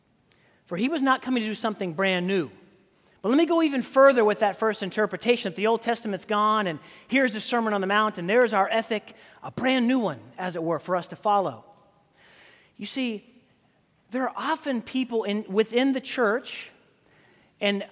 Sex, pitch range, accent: male, 185-235 Hz, American